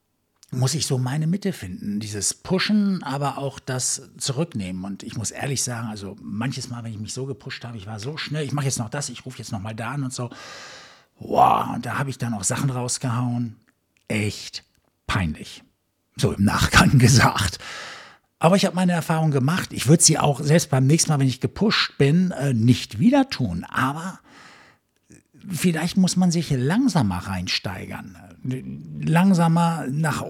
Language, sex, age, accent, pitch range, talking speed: German, male, 60-79, German, 120-165 Hz, 175 wpm